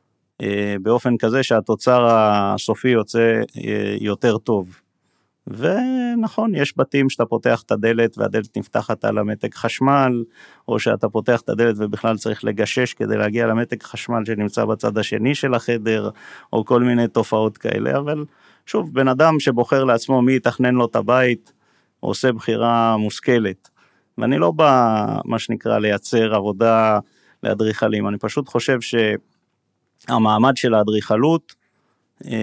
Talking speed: 130 wpm